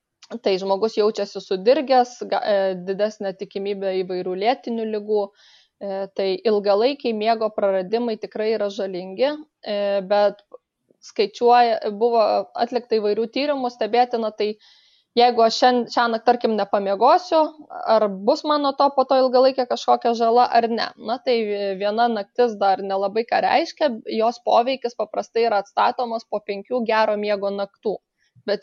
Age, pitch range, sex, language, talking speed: 20-39, 200-240 Hz, female, English, 120 wpm